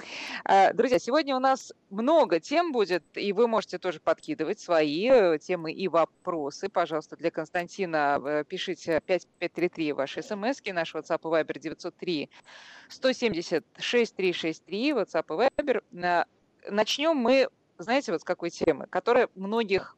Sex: female